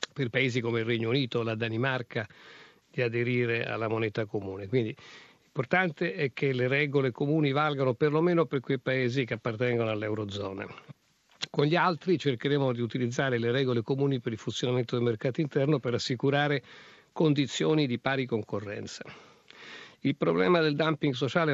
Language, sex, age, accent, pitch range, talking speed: Italian, male, 50-69, native, 120-145 Hz, 150 wpm